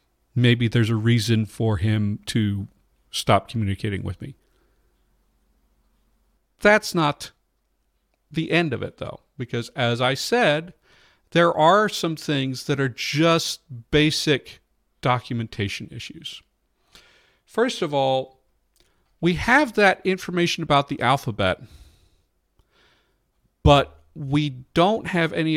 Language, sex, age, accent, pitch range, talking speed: English, male, 50-69, American, 115-145 Hz, 110 wpm